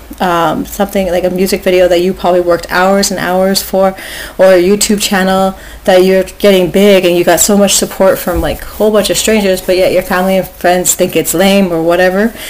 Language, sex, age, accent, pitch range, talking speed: English, female, 30-49, American, 175-195 Hz, 220 wpm